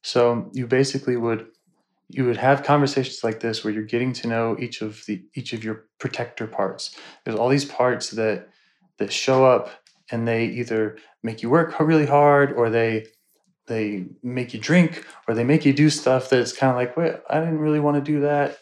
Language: English